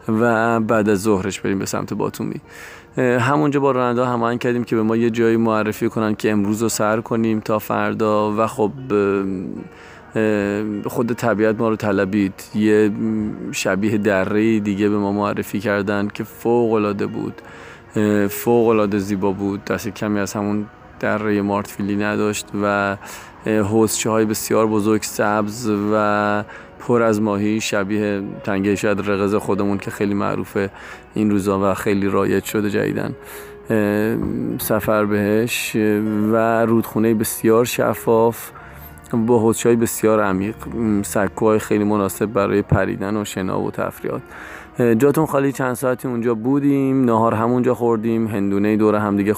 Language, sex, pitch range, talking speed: Persian, male, 100-115 Hz, 135 wpm